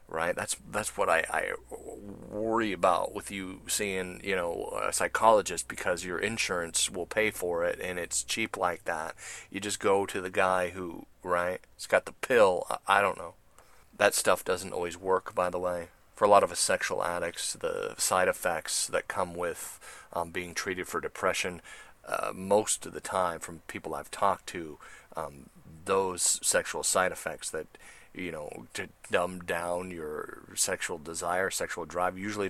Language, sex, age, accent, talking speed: English, male, 30-49, American, 175 wpm